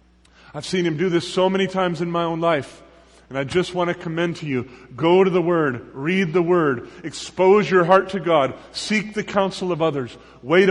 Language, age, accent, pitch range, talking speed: English, 40-59, American, 155-200 Hz, 215 wpm